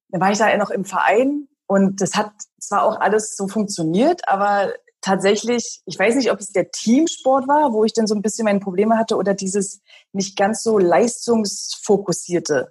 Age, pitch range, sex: 30-49, 175-225 Hz, female